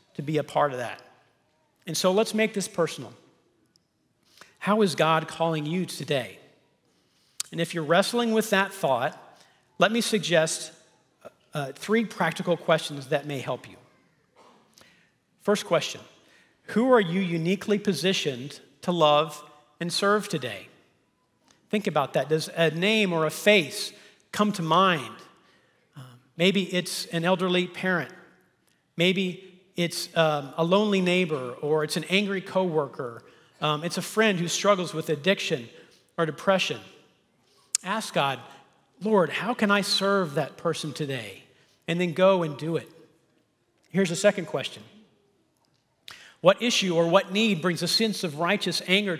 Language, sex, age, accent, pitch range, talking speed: English, male, 40-59, American, 155-195 Hz, 145 wpm